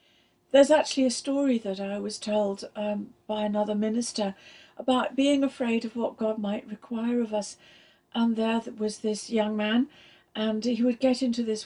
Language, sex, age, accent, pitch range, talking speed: English, female, 60-79, British, 220-275 Hz, 175 wpm